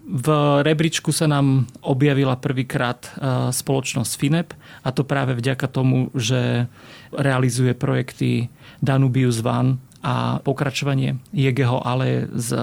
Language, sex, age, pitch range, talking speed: Slovak, male, 30-49, 130-150 Hz, 110 wpm